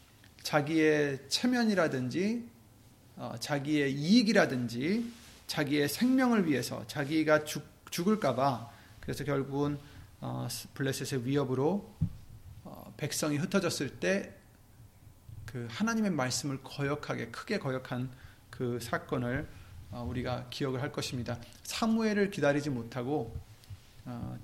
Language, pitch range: Korean, 115-185 Hz